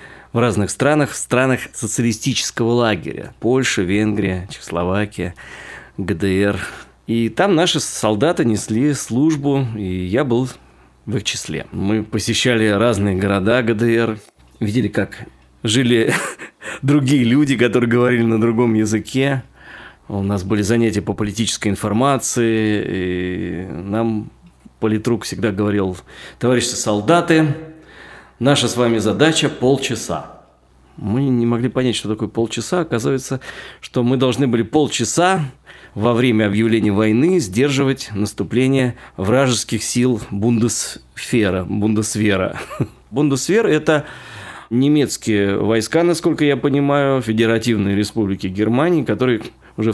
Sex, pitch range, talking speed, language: male, 105-130 Hz, 110 wpm, Russian